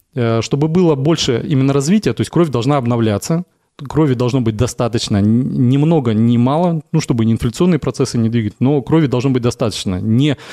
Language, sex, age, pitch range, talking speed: Russian, male, 20-39, 115-140 Hz, 175 wpm